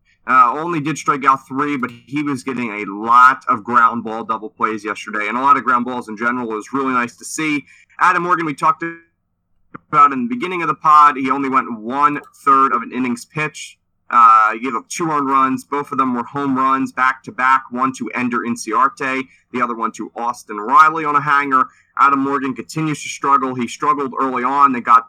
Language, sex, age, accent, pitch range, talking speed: English, male, 30-49, American, 120-150 Hz, 215 wpm